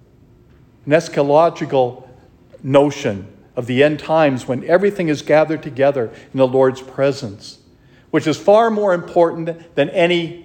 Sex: male